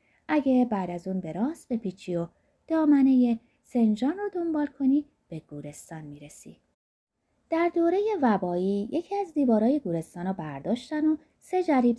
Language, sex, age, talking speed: Persian, female, 20-39, 145 wpm